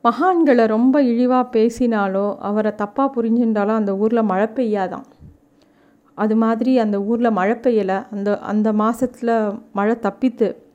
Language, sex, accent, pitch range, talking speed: Tamil, female, native, 210-260 Hz, 125 wpm